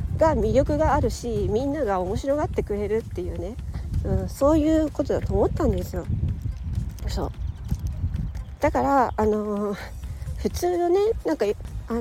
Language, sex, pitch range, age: Japanese, female, 210-290 Hz, 40-59